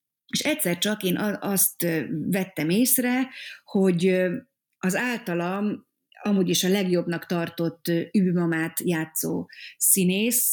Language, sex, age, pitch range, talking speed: Hungarian, female, 30-49, 165-210 Hz, 105 wpm